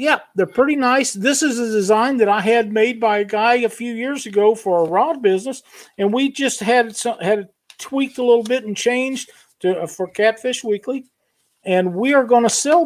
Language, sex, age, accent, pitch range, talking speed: English, male, 50-69, American, 165-225 Hz, 225 wpm